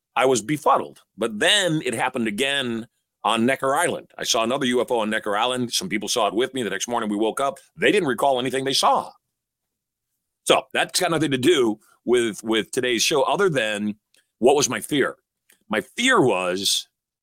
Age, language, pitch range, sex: 40-59, English, 105-135 Hz, male